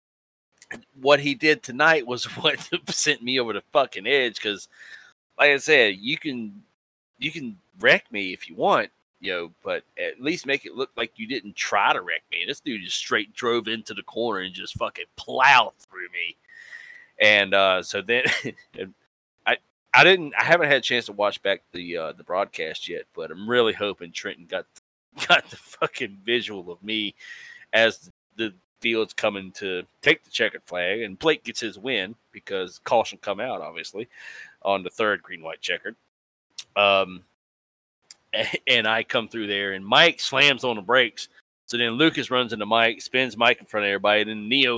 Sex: male